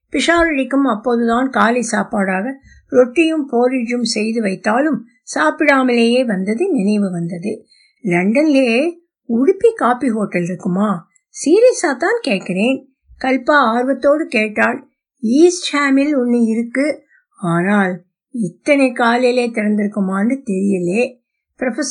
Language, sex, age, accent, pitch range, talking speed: Tamil, female, 60-79, native, 215-290 Hz, 40 wpm